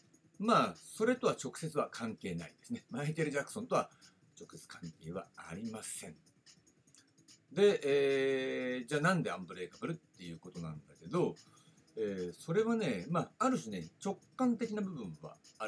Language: Japanese